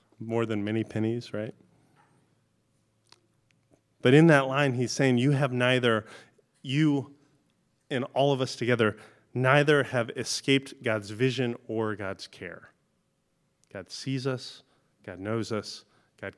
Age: 30-49